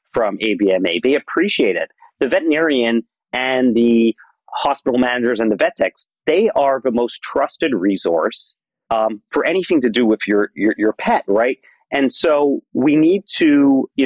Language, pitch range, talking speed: English, 115-150 Hz, 160 wpm